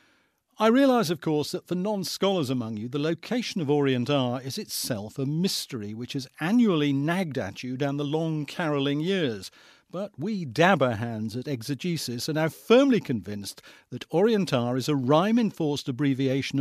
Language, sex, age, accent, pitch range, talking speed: English, male, 50-69, British, 135-190 Hz, 170 wpm